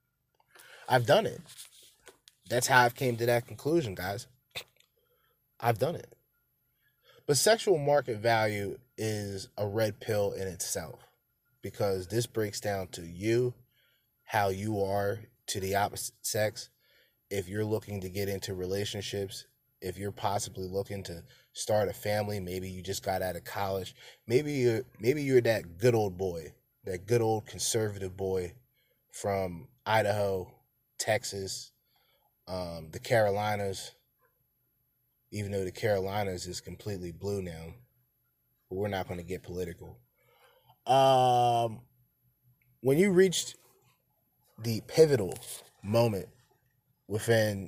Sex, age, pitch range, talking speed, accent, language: male, 20-39, 95-125 Hz, 125 wpm, American, English